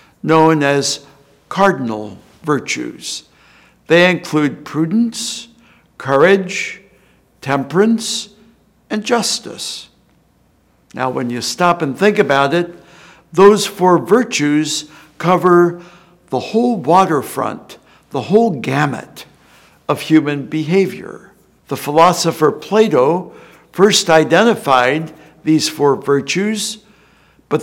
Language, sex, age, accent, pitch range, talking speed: English, male, 60-79, American, 150-205 Hz, 90 wpm